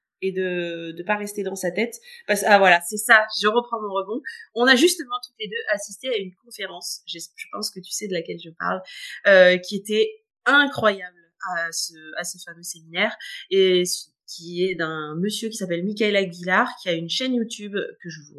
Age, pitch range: 30-49, 180-250 Hz